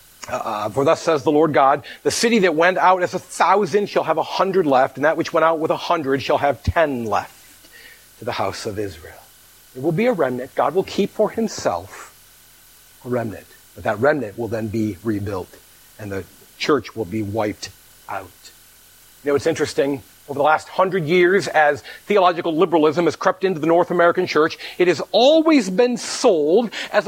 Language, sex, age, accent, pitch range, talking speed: English, male, 40-59, American, 140-205 Hz, 195 wpm